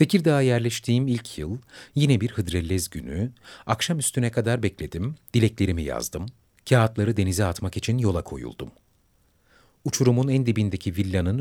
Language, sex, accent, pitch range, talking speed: Turkish, male, native, 90-120 Hz, 125 wpm